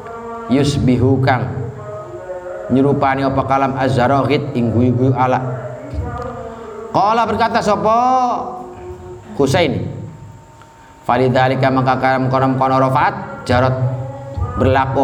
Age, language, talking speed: 30-49, Indonesian, 70 wpm